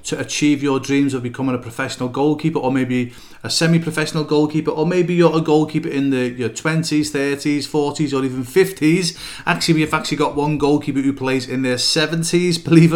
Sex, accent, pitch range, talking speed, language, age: male, British, 130-155 Hz, 185 wpm, English, 30-49